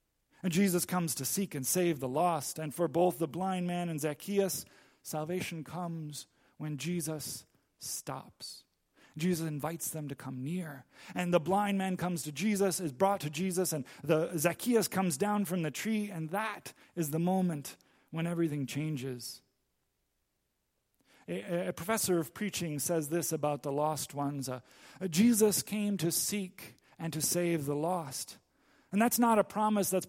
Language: English